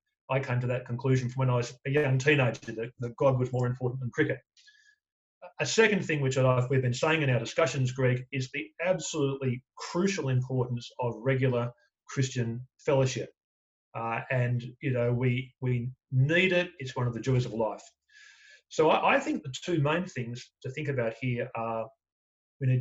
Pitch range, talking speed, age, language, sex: 125-150 Hz, 185 wpm, 40-59, English, male